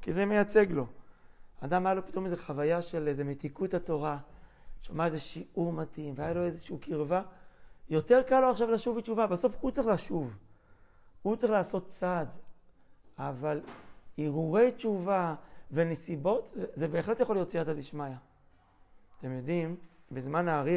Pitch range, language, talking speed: 150-195 Hz, Hebrew, 145 wpm